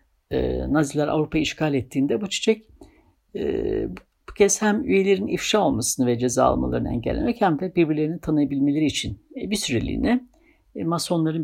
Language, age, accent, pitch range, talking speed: Turkish, 60-79, native, 135-205 Hz, 140 wpm